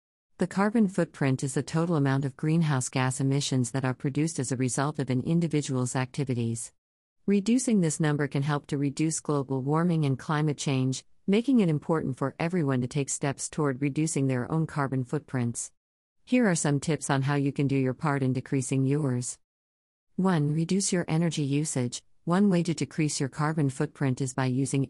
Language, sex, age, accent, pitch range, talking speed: English, female, 50-69, American, 130-155 Hz, 185 wpm